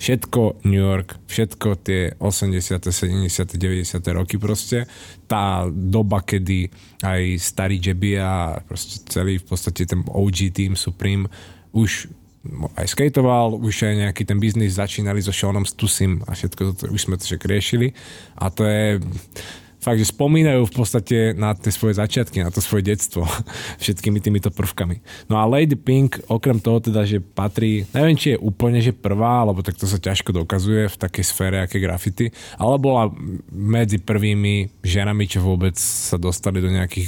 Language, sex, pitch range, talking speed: Slovak, male, 95-110 Hz, 160 wpm